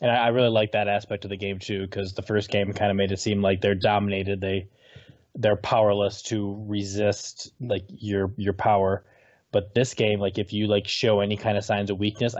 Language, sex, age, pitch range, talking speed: English, male, 20-39, 100-115 Hz, 225 wpm